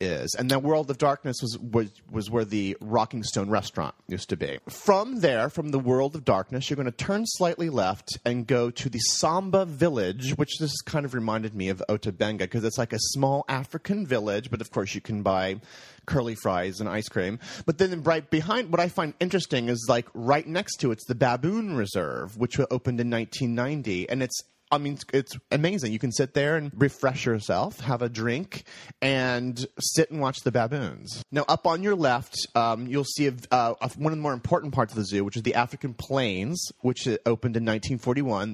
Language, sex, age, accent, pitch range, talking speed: English, male, 30-49, American, 110-145 Hz, 205 wpm